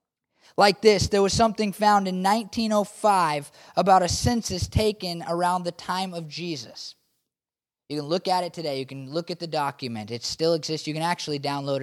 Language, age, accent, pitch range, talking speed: English, 20-39, American, 145-210 Hz, 185 wpm